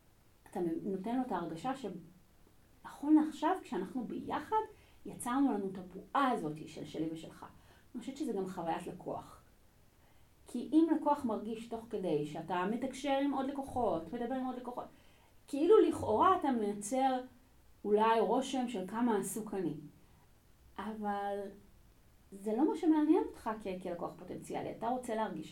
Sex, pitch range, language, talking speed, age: female, 185-275 Hz, Hebrew, 140 wpm, 30-49